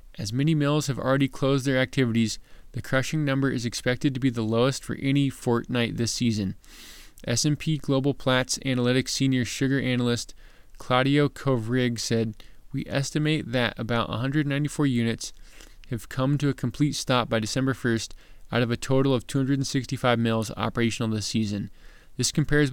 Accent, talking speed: American, 155 wpm